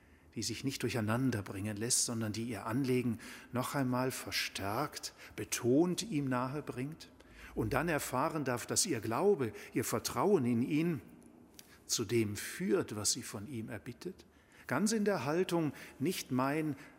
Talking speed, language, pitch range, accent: 145 wpm, German, 105-130 Hz, German